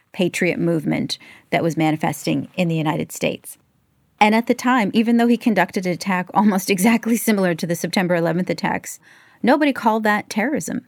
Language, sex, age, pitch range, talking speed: English, female, 30-49, 160-200 Hz, 170 wpm